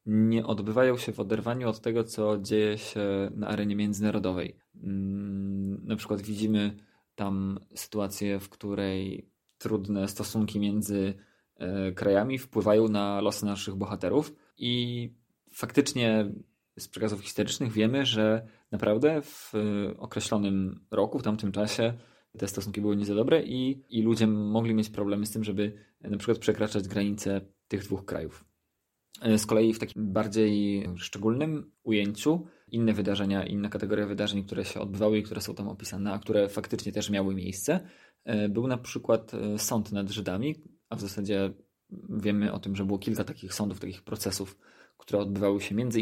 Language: Polish